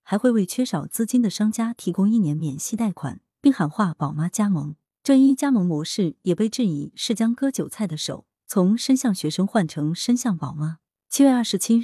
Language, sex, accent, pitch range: Chinese, female, native, 160-230 Hz